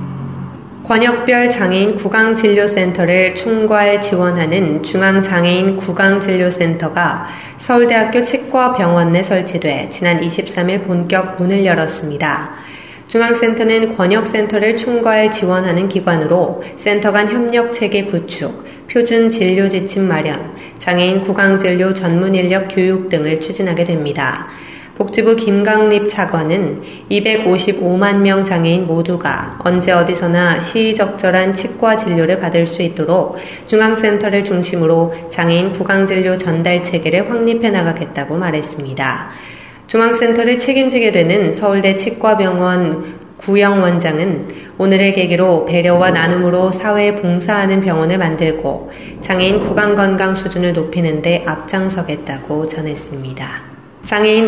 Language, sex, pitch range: Korean, female, 170-205 Hz